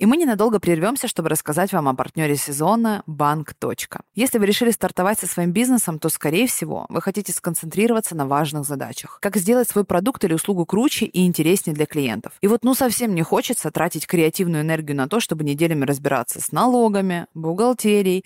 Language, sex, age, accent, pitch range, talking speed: Russian, female, 20-39, native, 150-205 Hz, 180 wpm